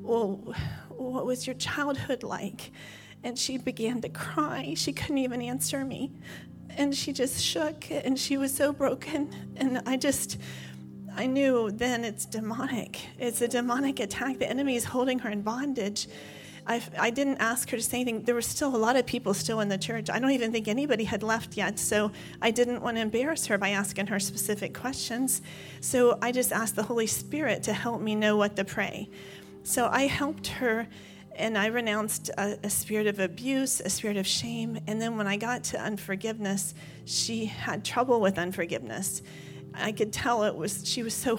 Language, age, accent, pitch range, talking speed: English, 40-59, American, 195-245 Hz, 195 wpm